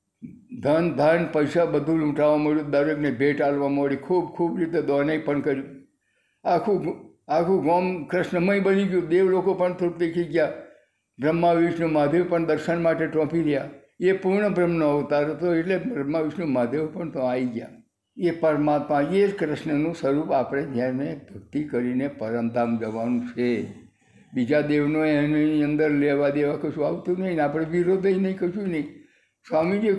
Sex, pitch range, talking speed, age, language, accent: male, 145-175 Hz, 155 wpm, 60-79, Gujarati, native